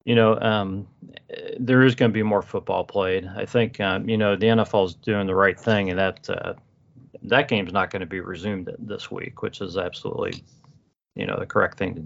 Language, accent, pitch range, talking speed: English, American, 100-125 Hz, 225 wpm